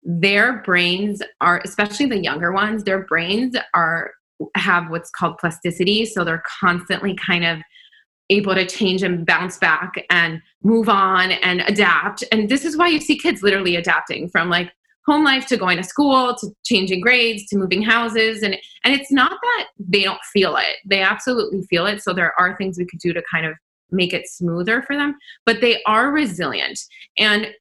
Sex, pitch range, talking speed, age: female, 180-225 Hz, 185 wpm, 20-39